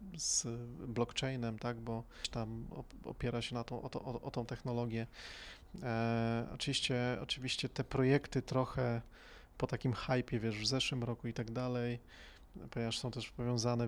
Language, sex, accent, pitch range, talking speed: Polish, male, native, 115-130 Hz, 150 wpm